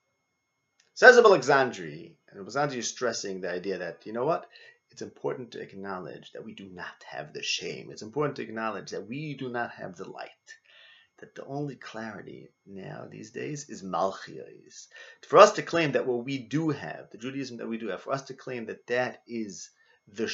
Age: 30-49